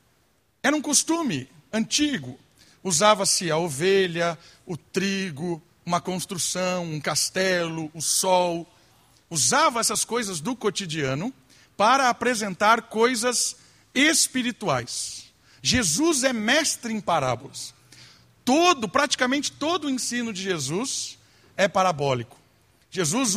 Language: Portuguese